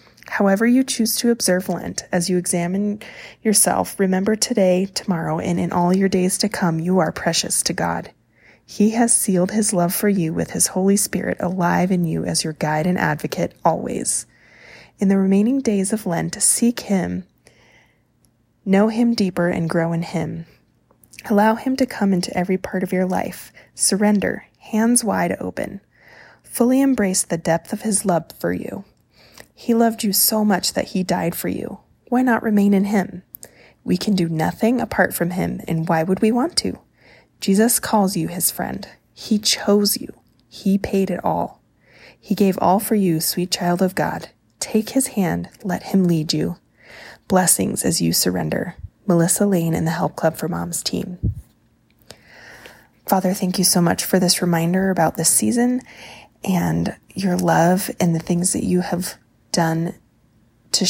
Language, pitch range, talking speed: English, 165-205 Hz, 170 wpm